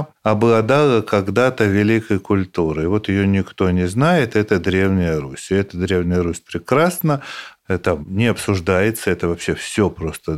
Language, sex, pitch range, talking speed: Russian, male, 100-130 Hz, 140 wpm